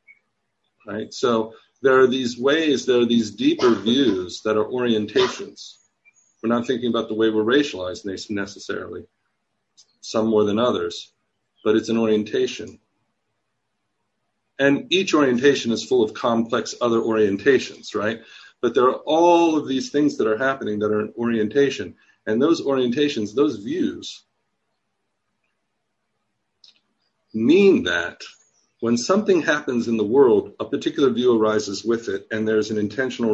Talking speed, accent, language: 140 wpm, American, English